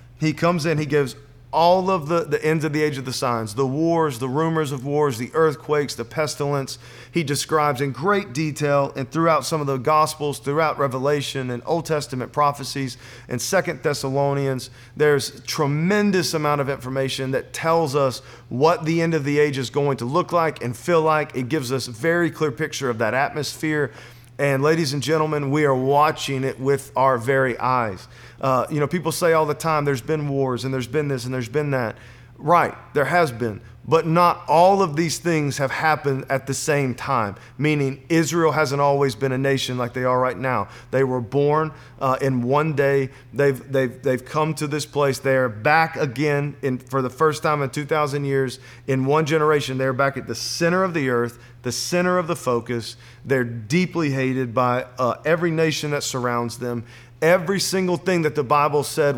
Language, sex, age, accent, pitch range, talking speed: English, male, 40-59, American, 130-155 Hz, 200 wpm